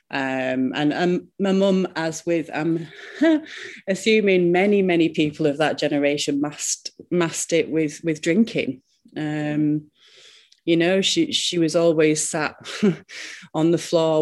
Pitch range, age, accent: 135-165 Hz, 30-49, British